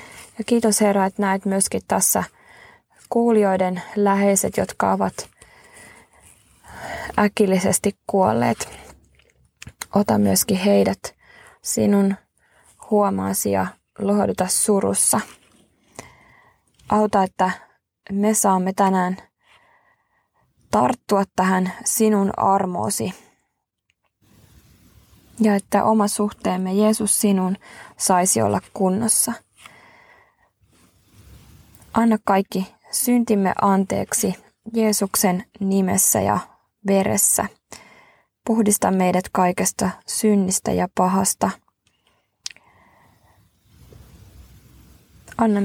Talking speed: 70 wpm